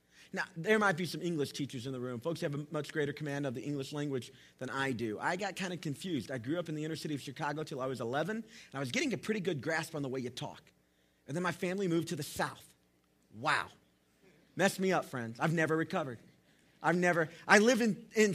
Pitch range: 140-210 Hz